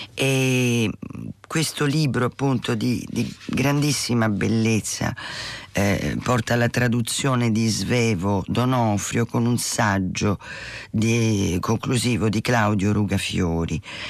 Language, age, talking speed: Italian, 40-59, 100 wpm